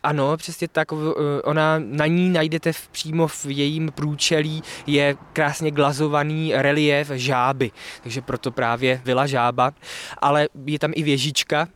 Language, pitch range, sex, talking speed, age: Czech, 130-150 Hz, male, 140 wpm, 20-39